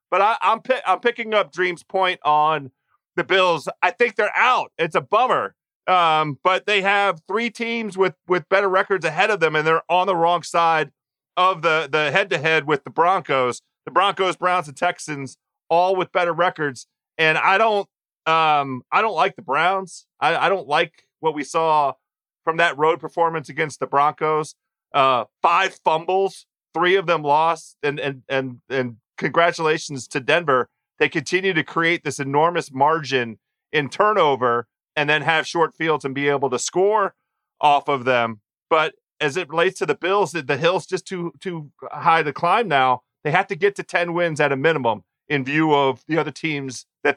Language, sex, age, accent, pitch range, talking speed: English, male, 40-59, American, 140-180 Hz, 190 wpm